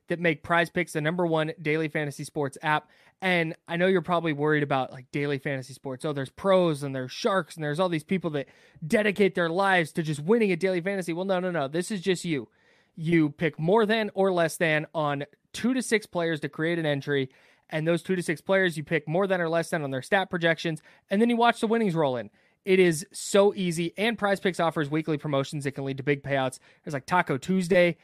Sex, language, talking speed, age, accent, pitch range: male, English, 240 wpm, 20-39, American, 145-185 Hz